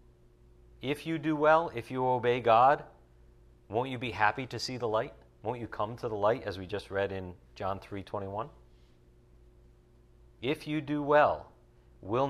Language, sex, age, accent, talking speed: English, male, 50-69, American, 175 wpm